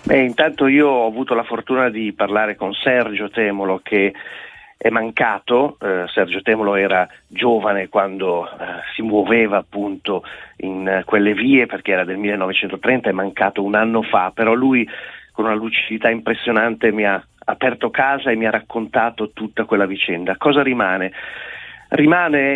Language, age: Italian, 40-59